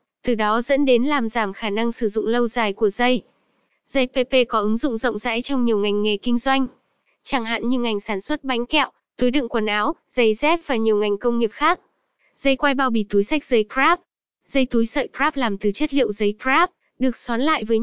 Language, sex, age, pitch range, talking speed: Vietnamese, female, 10-29, 225-275 Hz, 230 wpm